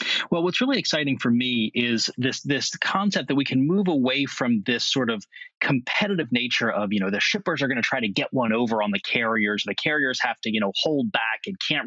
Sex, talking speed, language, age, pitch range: male, 240 wpm, English, 30-49, 130-210 Hz